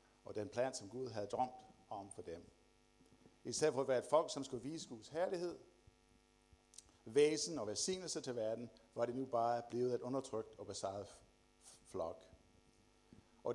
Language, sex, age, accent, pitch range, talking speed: Danish, male, 60-79, native, 105-135 Hz, 165 wpm